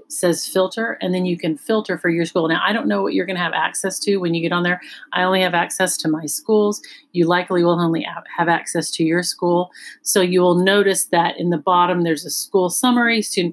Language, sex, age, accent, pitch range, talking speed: English, female, 40-59, American, 170-225 Hz, 245 wpm